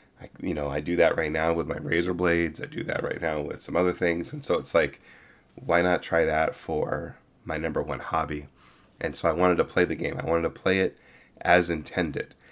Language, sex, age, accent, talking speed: English, male, 30-49, American, 230 wpm